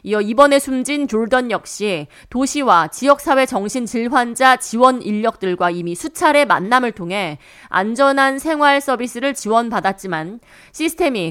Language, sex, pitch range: Korean, female, 185-275 Hz